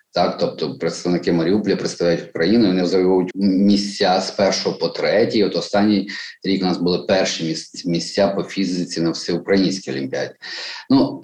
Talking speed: 145 wpm